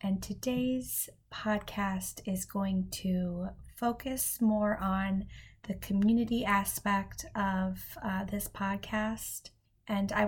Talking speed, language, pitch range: 105 wpm, English, 185-215 Hz